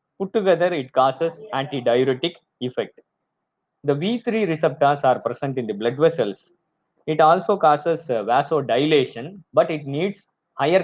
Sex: male